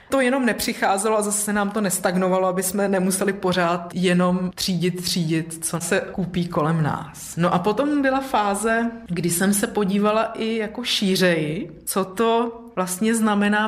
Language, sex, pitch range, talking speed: Czech, female, 175-210 Hz, 160 wpm